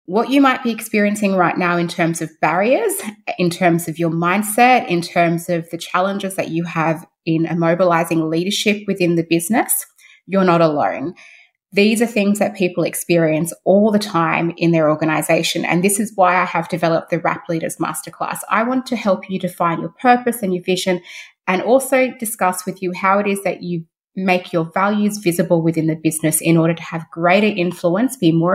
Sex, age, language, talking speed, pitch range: female, 20-39, English, 195 wpm, 170-200 Hz